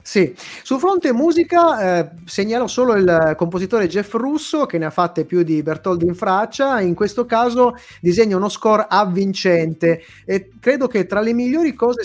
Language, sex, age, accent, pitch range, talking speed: Italian, male, 30-49, native, 165-235 Hz, 170 wpm